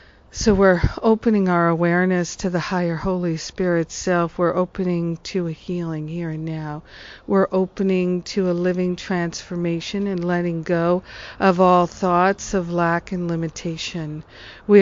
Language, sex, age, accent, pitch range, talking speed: English, female, 50-69, American, 165-190 Hz, 145 wpm